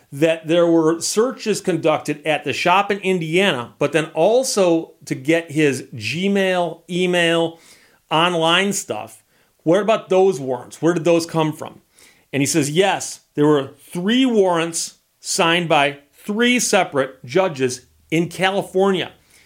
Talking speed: 135 wpm